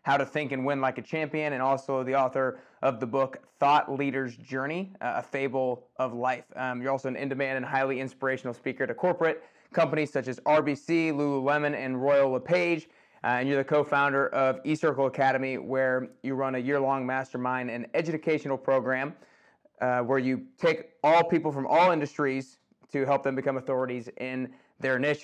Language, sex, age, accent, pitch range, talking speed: English, male, 30-49, American, 130-150 Hz, 180 wpm